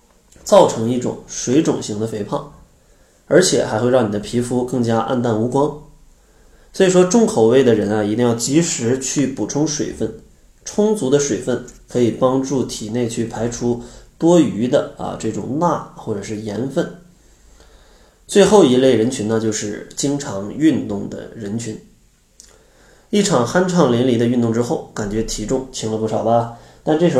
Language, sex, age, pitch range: Chinese, male, 20-39, 110-150 Hz